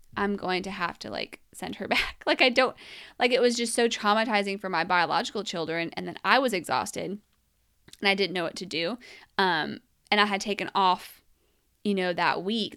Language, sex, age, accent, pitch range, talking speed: English, female, 20-39, American, 180-230 Hz, 205 wpm